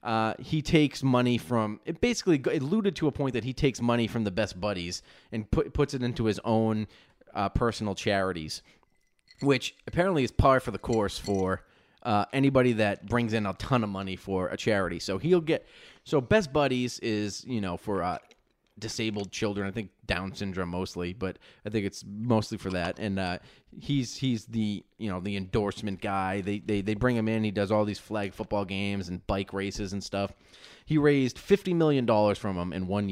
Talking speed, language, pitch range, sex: 200 wpm, English, 100-130 Hz, male